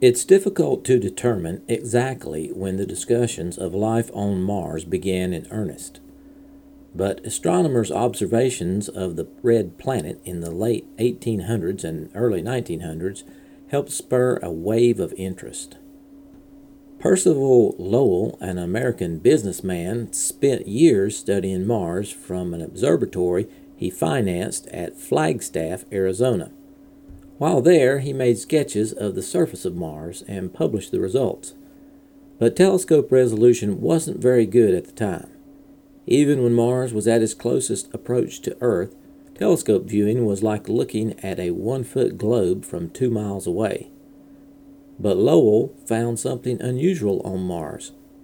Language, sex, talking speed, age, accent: English, male, 130 wpm, 50-69, American